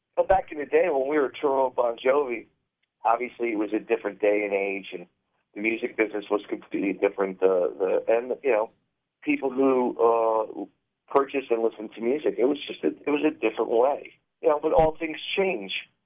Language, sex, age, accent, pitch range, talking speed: English, male, 40-59, American, 105-140 Hz, 205 wpm